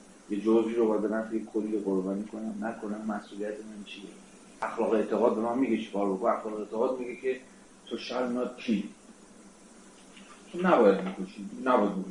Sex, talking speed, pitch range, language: male, 130 wpm, 100-130 Hz, Persian